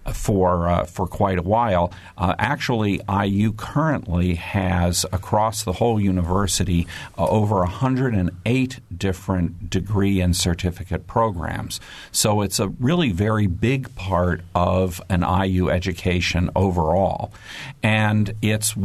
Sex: male